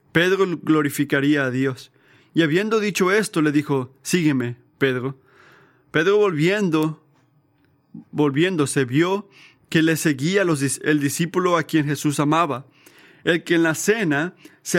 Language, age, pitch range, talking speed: Spanish, 30-49, 140-175 Hz, 130 wpm